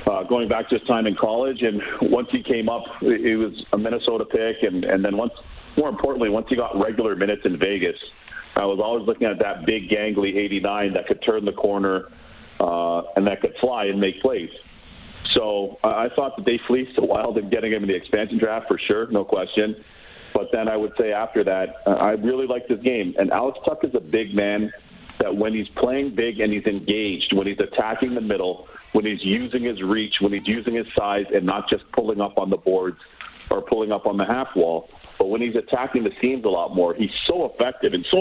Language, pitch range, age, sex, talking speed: English, 100-125 Hz, 40-59, male, 225 wpm